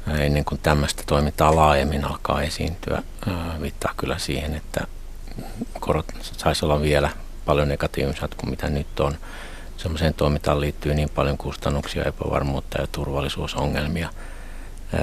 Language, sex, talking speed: Finnish, male, 120 wpm